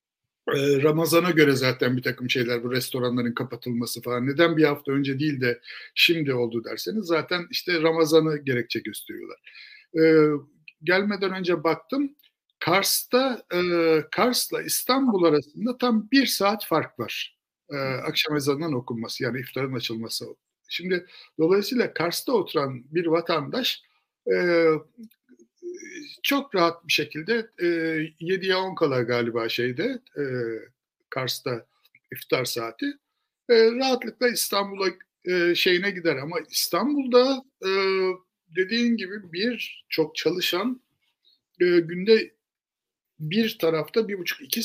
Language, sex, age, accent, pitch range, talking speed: Turkish, male, 60-79, native, 145-220 Hz, 110 wpm